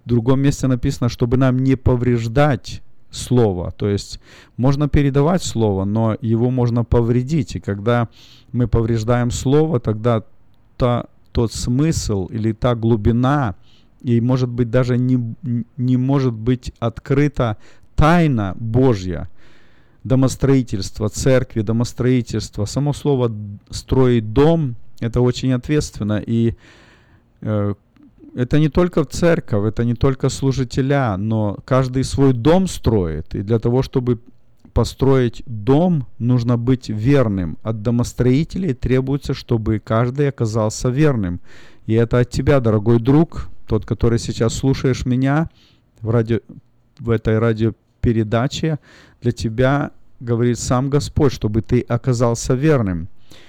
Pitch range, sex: 110-135 Hz, male